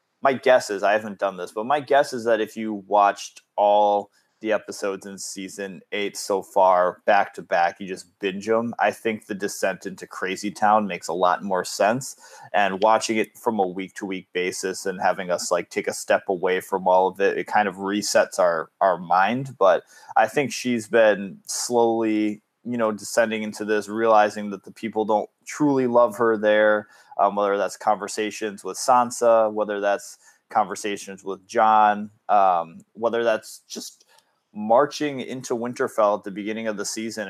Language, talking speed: English, 180 wpm